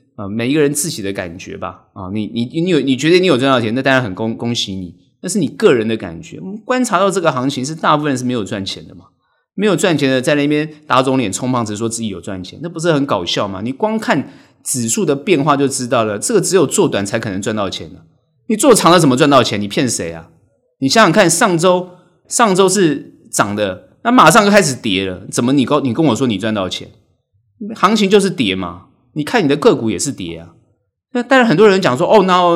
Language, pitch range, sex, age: Chinese, 105-150 Hz, male, 30-49